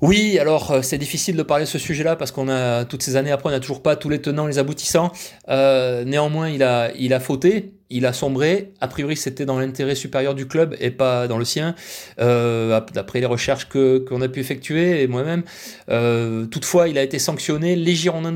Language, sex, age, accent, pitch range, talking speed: French, male, 30-49, French, 130-170 Hz, 220 wpm